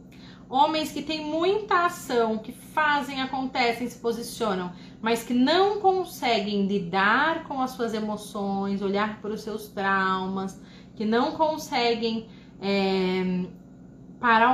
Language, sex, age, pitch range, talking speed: Portuguese, female, 30-49, 195-260 Hz, 115 wpm